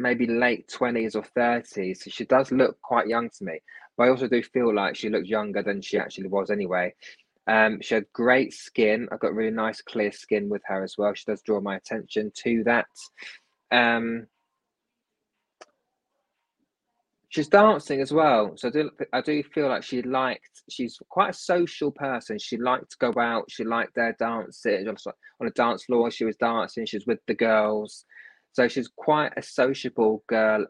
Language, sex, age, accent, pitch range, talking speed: English, male, 20-39, British, 110-130 Hz, 185 wpm